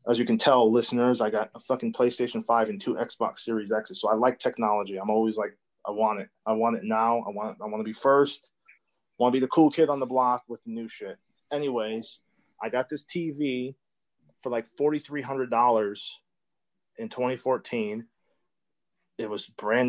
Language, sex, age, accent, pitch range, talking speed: English, male, 30-49, American, 110-140 Hz, 195 wpm